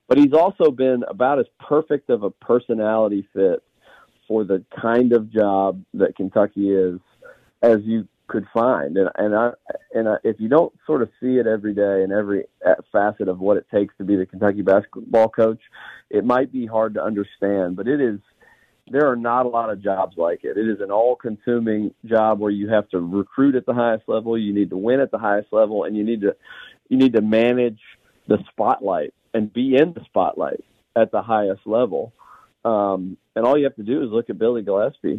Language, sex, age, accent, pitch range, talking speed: English, male, 40-59, American, 105-130 Hz, 205 wpm